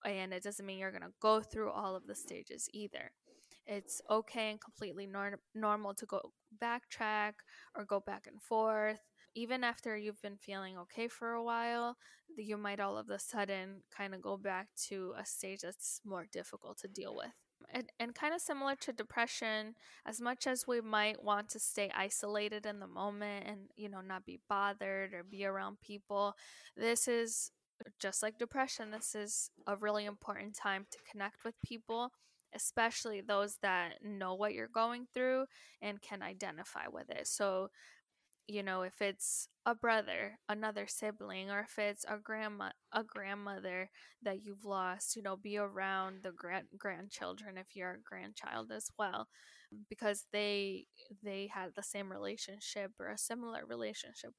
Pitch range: 195-225 Hz